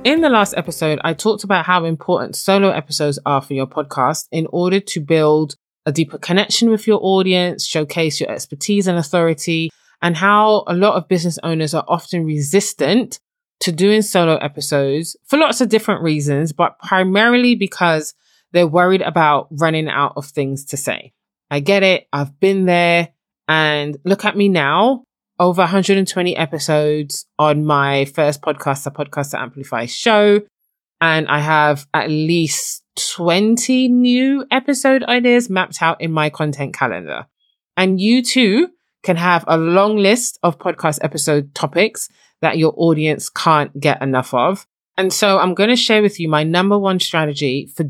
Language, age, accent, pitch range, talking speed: English, 20-39, British, 150-195 Hz, 165 wpm